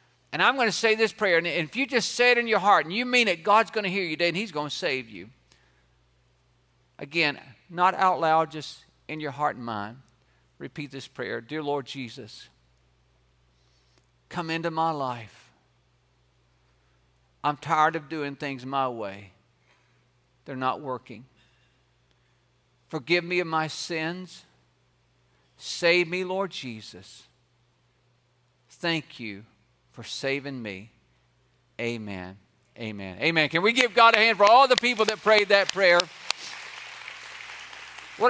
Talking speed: 145 wpm